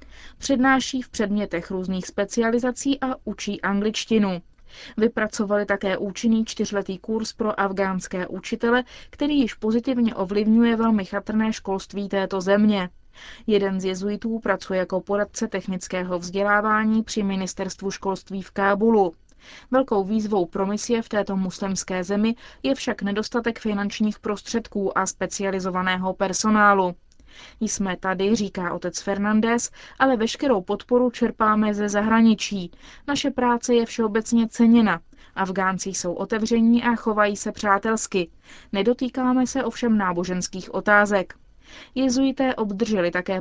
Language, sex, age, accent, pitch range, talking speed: Czech, female, 20-39, native, 195-230 Hz, 115 wpm